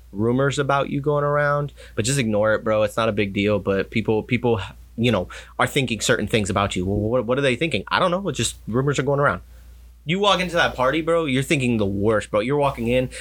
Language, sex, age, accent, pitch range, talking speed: English, male, 30-49, American, 100-125 Hz, 250 wpm